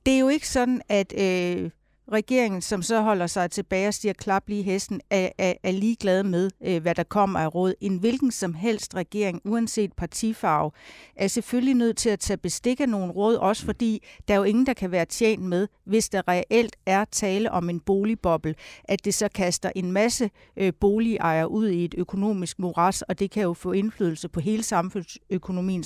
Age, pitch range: 60-79, 185-225 Hz